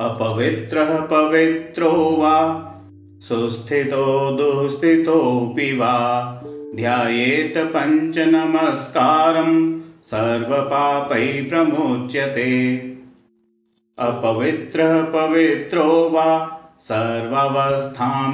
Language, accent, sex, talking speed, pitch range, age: Hindi, native, male, 40 wpm, 125-160 Hz, 40-59